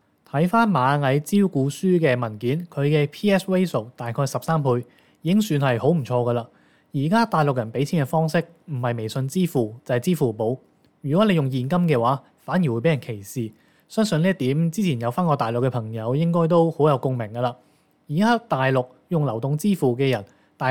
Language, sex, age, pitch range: Chinese, male, 20-39, 125-165 Hz